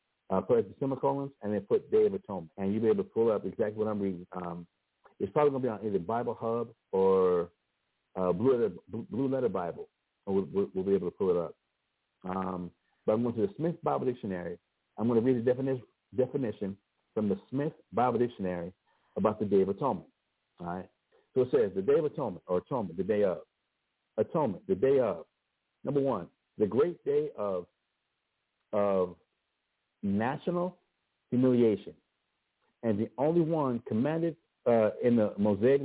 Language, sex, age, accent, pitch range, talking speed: English, male, 50-69, American, 105-155 Hz, 185 wpm